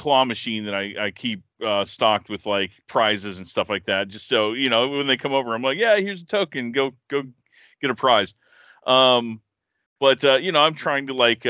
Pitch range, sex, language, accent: 100-130 Hz, male, English, American